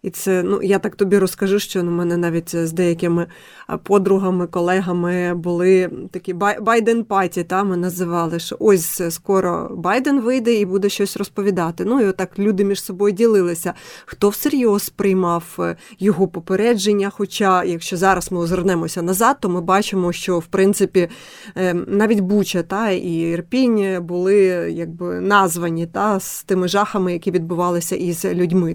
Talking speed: 150 wpm